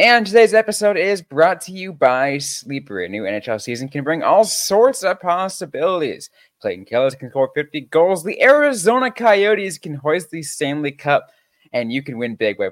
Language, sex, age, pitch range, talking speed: English, male, 20-39, 115-190 Hz, 185 wpm